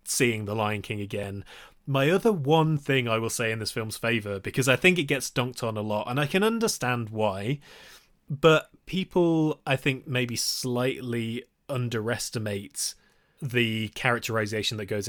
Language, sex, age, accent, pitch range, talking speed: English, male, 20-39, British, 110-140 Hz, 165 wpm